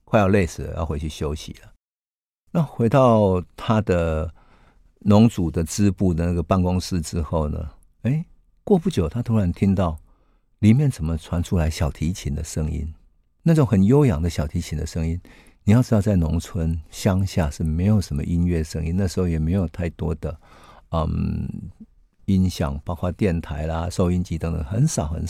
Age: 50-69